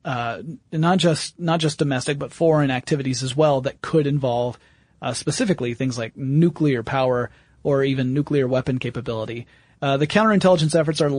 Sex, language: male, English